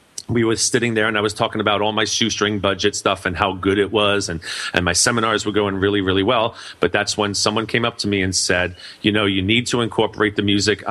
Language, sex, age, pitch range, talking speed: English, male, 40-59, 95-115 Hz, 255 wpm